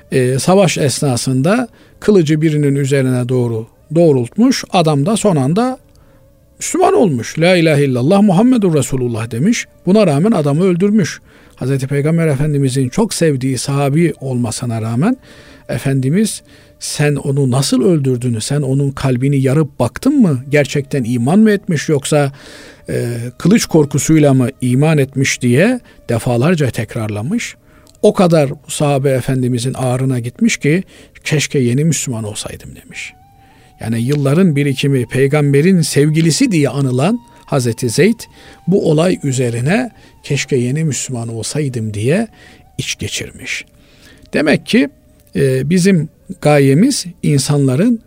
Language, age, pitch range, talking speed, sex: Turkish, 50-69, 130-170 Hz, 115 wpm, male